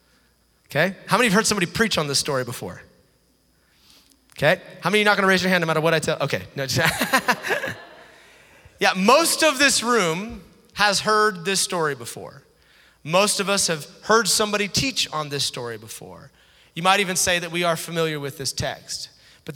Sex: male